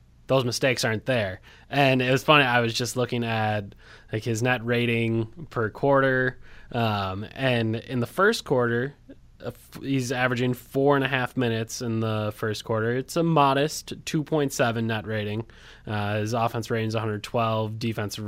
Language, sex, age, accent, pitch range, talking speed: English, male, 20-39, American, 115-135 Hz, 165 wpm